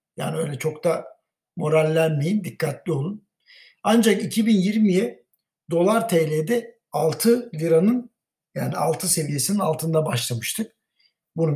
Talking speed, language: 100 wpm, Turkish